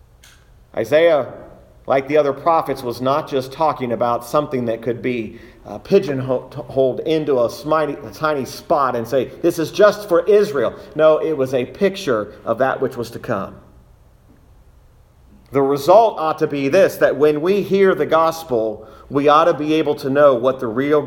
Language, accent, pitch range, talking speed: English, American, 140-190 Hz, 170 wpm